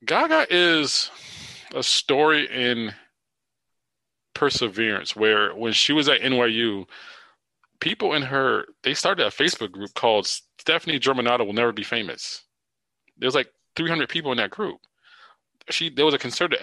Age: 20-39